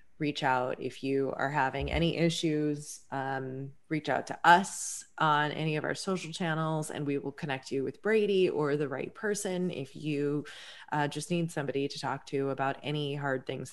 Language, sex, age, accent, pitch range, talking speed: English, female, 20-39, American, 135-155 Hz, 190 wpm